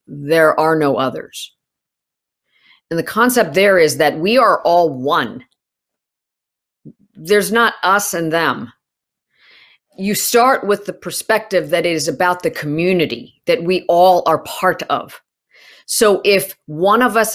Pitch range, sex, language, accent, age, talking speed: 160-220 Hz, female, English, American, 40-59, 140 wpm